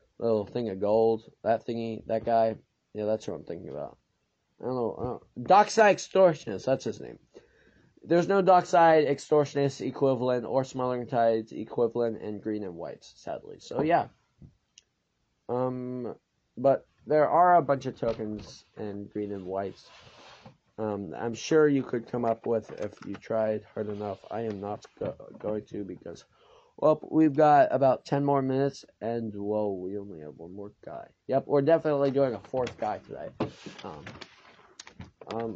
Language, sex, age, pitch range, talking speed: English, male, 20-39, 110-140 Hz, 160 wpm